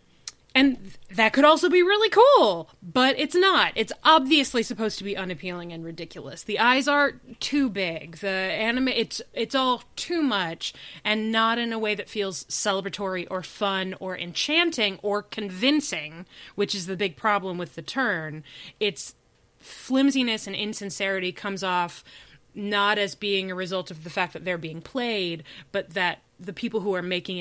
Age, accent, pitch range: 20-39, American, 180-255 Hz